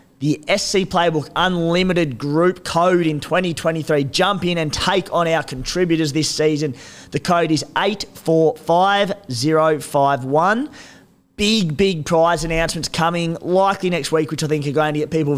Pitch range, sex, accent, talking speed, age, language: 150-175 Hz, male, Australian, 145 wpm, 20-39, English